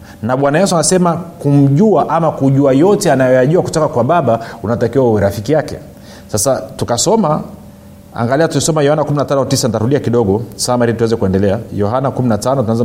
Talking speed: 145 wpm